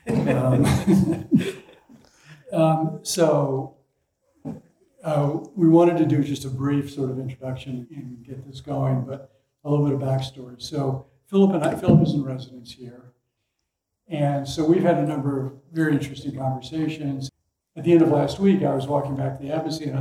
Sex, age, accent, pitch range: male, 60-79, American, 130-150 Hz